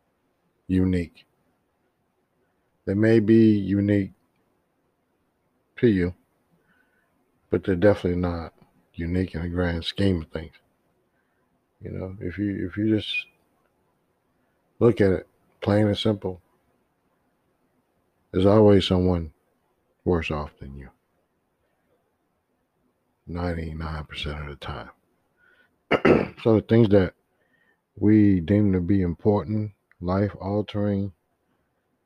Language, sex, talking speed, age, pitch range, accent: English, male, 100 wpm, 50-69, 90-105 Hz, American